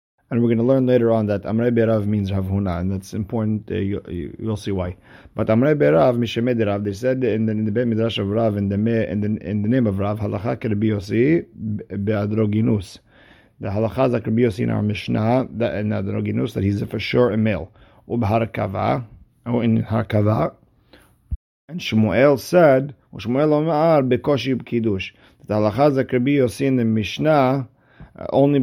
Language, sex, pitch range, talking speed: English, male, 105-125 Hz, 170 wpm